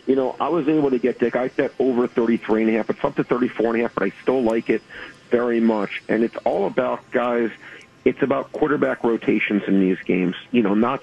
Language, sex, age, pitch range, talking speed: English, male, 40-59, 110-125 Hz, 205 wpm